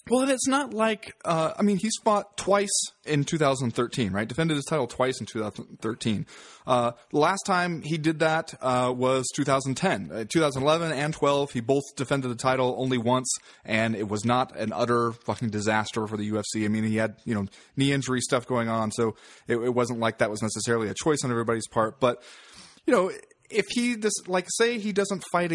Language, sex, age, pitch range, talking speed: English, male, 20-39, 115-155 Hz, 200 wpm